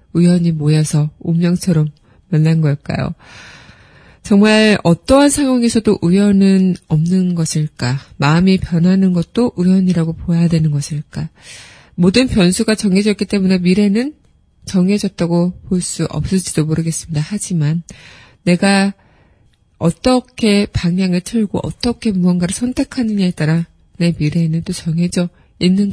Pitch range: 160-200 Hz